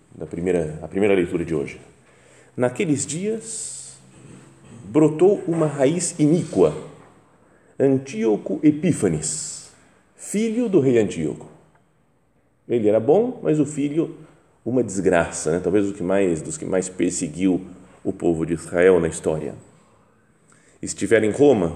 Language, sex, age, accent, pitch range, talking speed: Portuguese, male, 40-59, Brazilian, 90-135 Hz, 125 wpm